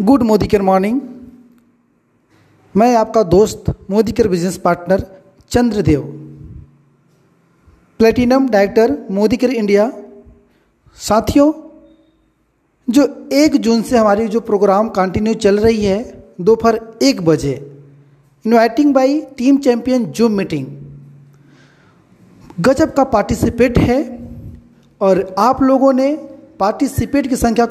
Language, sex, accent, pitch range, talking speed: Hindi, male, native, 195-270 Hz, 105 wpm